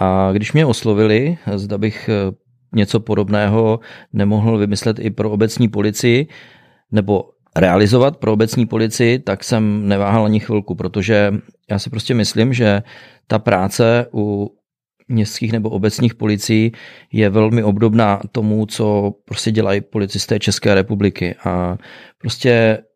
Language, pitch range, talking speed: Czech, 100-115 Hz, 130 wpm